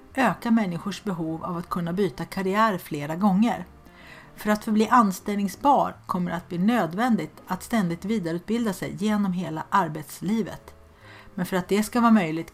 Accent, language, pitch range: native, Swedish, 165-205 Hz